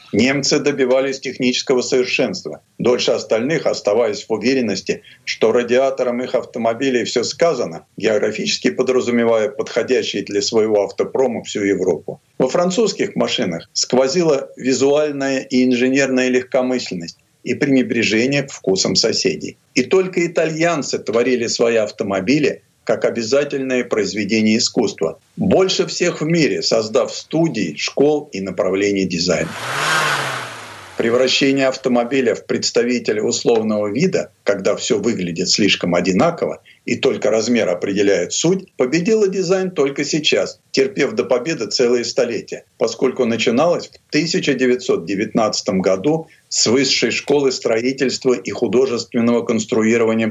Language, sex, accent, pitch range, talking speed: Russian, male, native, 120-165 Hz, 110 wpm